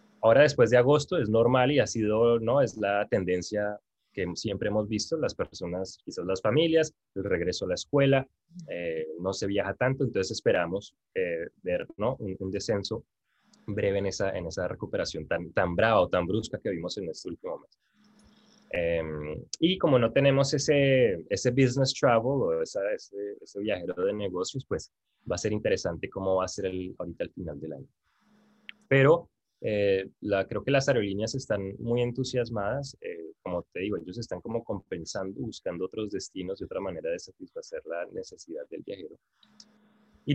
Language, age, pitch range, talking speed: Spanish, 20-39, 100-155 Hz, 180 wpm